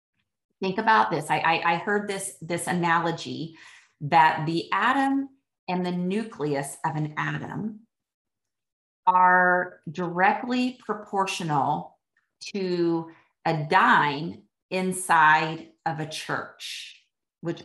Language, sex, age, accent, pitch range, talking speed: English, female, 30-49, American, 160-195 Hz, 100 wpm